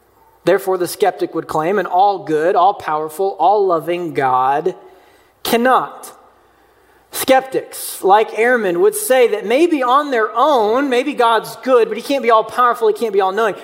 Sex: male